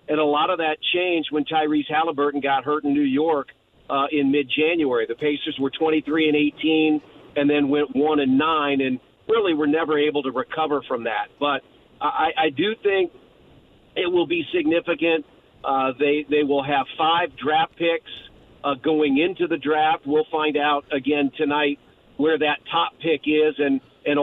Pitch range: 150-180 Hz